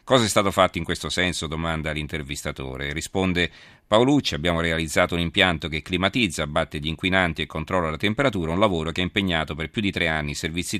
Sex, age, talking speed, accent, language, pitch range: male, 40-59, 200 wpm, native, Italian, 80-100 Hz